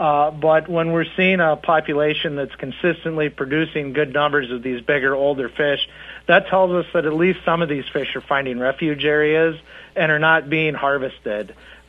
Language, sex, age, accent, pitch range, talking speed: English, male, 50-69, American, 140-165 Hz, 180 wpm